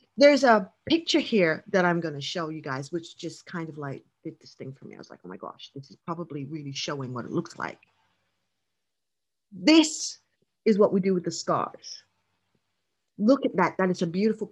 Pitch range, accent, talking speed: 135-210 Hz, American, 210 wpm